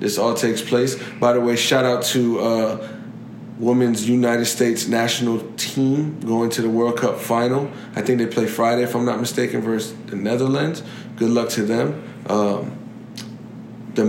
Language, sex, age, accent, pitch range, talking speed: English, male, 20-39, American, 115-130 Hz, 170 wpm